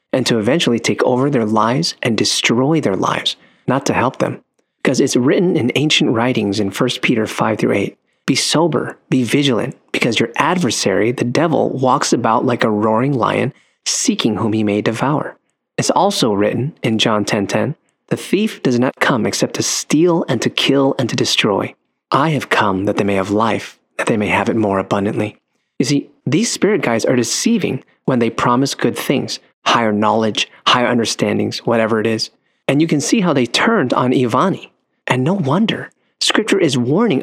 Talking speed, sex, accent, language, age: 185 wpm, male, American, English, 30-49